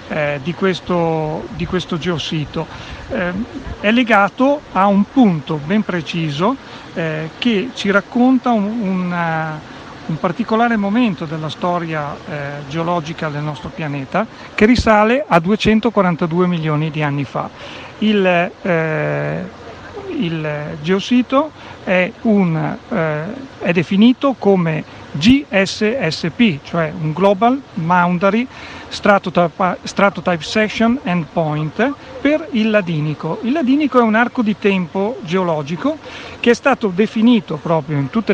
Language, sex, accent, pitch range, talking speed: Italian, male, native, 160-230 Hz, 110 wpm